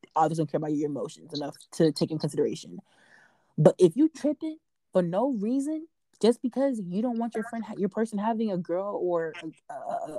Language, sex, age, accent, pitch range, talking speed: English, female, 20-39, American, 165-215 Hz, 200 wpm